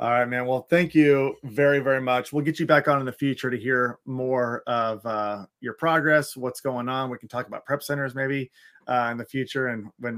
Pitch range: 125-150 Hz